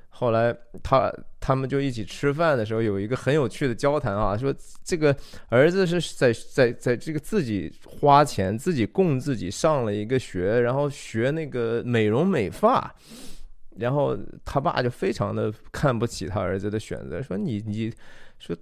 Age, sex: 20-39, male